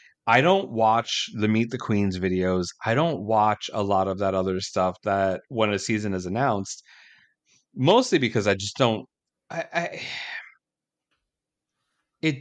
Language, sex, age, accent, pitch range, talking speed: English, male, 30-49, American, 100-130 Hz, 150 wpm